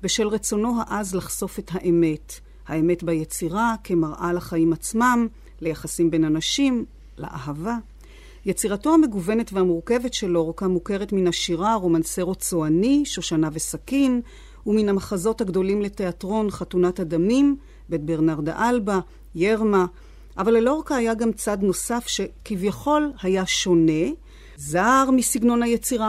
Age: 40-59